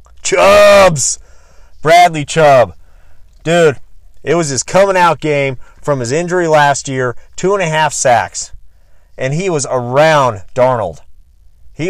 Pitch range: 110-160 Hz